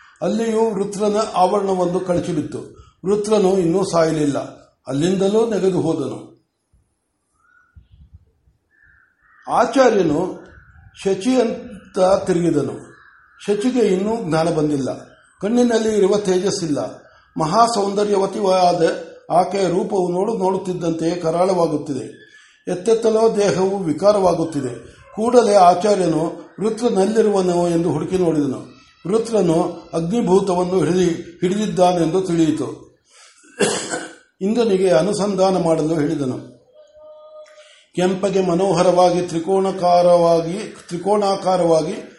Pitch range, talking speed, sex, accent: 170-205 Hz, 65 wpm, male, native